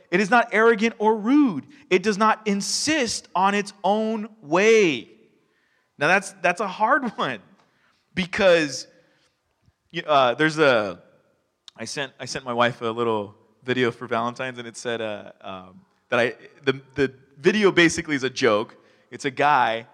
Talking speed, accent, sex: 155 wpm, American, male